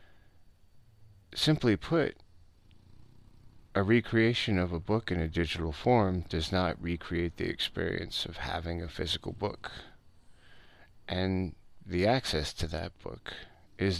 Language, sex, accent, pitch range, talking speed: English, male, American, 85-100 Hz, 120 wpm